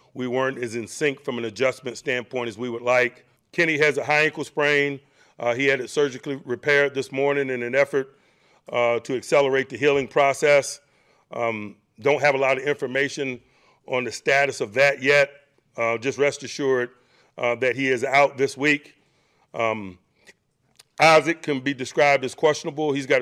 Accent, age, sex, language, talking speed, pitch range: American, 40-59, male, English, 180 wpm, 125-145 Hz